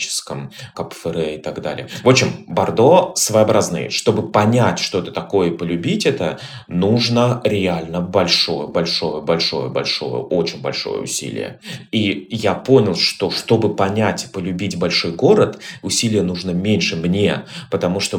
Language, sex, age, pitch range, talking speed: Russian, male, 20-39, 90-120 Hz, 135 wpm